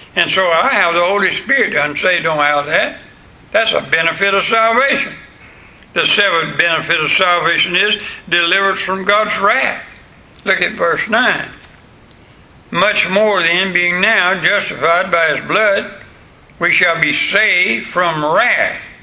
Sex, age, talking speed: male, 60-79, 145 wpm